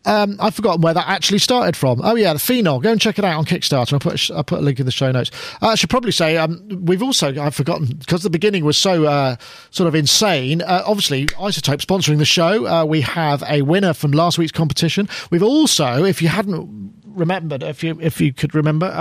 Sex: male